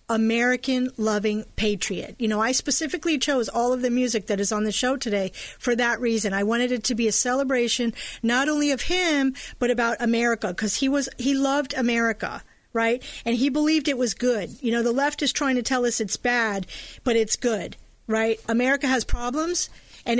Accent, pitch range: American, 215-260 Hz